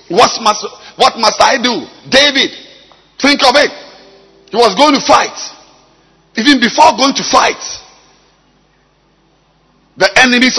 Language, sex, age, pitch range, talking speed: English, male, 50-69, 235-320 Hz, 120 wpm